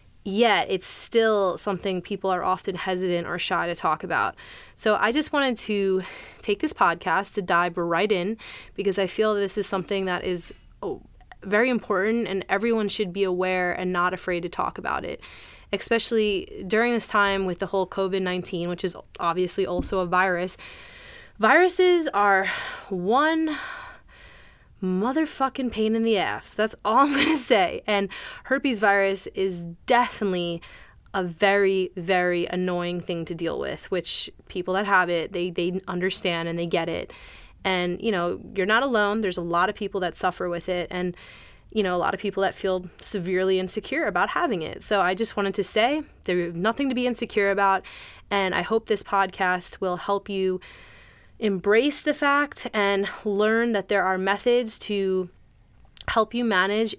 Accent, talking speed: American, 170 wpm